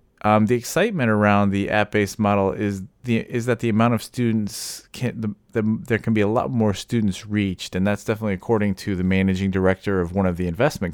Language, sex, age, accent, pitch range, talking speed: English, male, 30-49, American, 95-110 Hz, 215 wpm